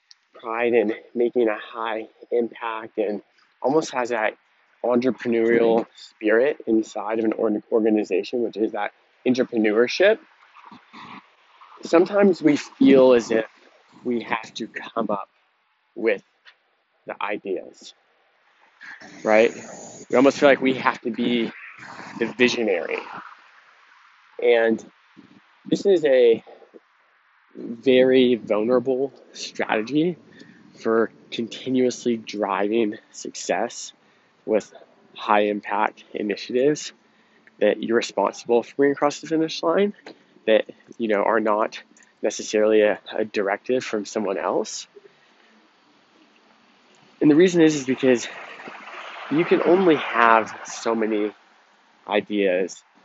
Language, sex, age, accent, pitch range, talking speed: English, male, 20-39, American, 110-130 Hz, 105 wpm